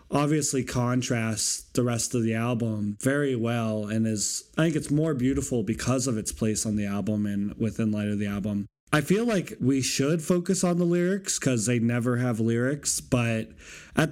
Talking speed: 190 wpm